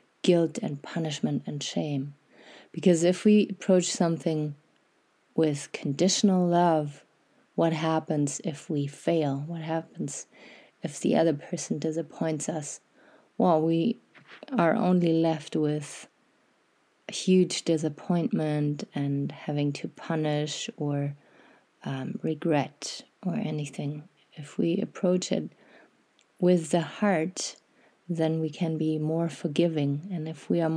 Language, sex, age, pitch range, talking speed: English, female, 30-49, 150-175 Hz, 120 wpm